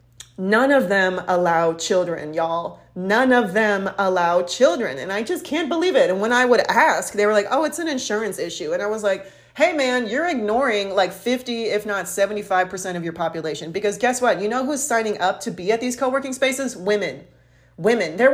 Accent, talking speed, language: American, 205 wpm, English